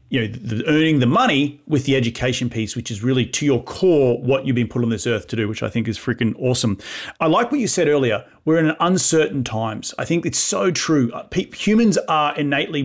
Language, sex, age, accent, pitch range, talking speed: English, male, 30-49, Australian, 120-150 Hz, 225 wpm